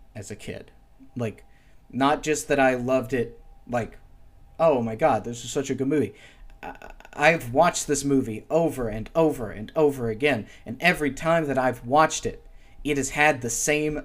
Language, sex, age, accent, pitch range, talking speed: English, male, 30-49, American, 115-150 Hz, 185 wpm